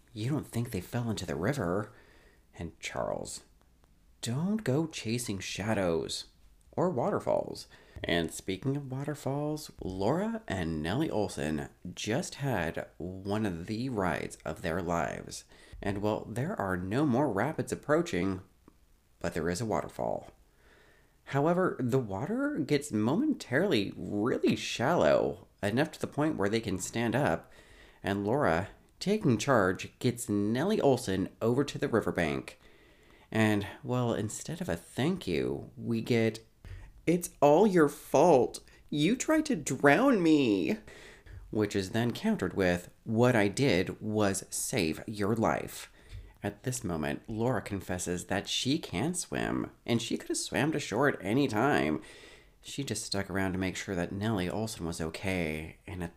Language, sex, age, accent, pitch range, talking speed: English, male, 30-49, American, 95-135 Hz, 145 wpm